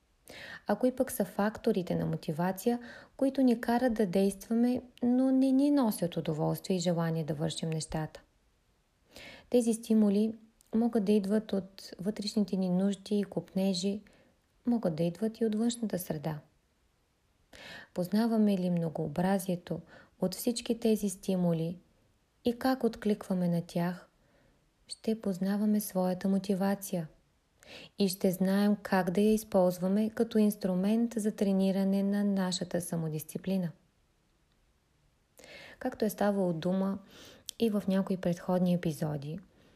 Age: 20-39